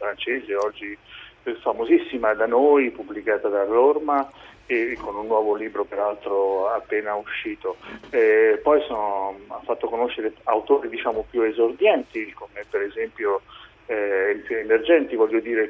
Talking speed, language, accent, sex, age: 120 wpm, Italian, native, male, 40-59